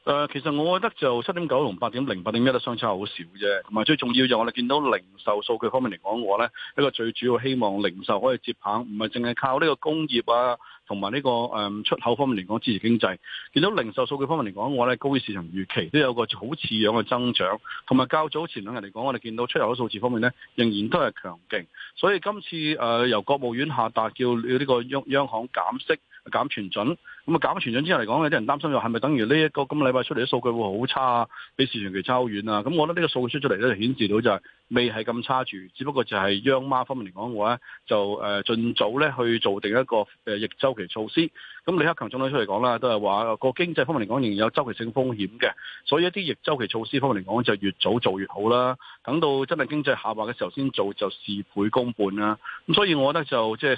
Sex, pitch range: male, 110-140 Hz